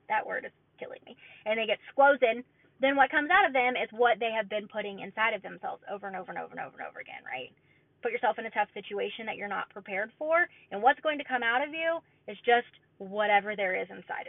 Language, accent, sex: English, American, female